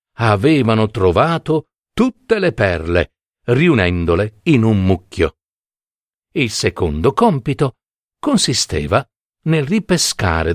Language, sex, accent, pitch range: Italian, male, native, 100-150 Hz